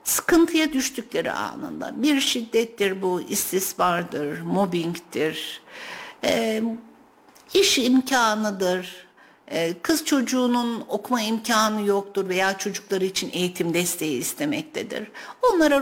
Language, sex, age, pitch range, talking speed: Turkish, female, 60-79, 190-285 Hz, 90 wpm